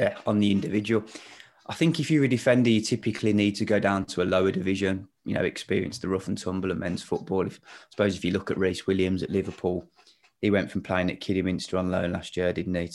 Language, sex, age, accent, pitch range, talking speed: English, male, 20-39, British, 90-105 Hz, 230 wpm